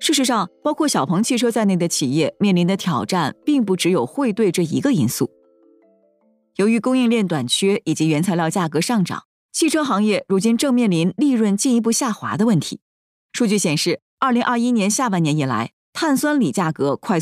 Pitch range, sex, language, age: 160-235 Hz, female, Chinese, 20-39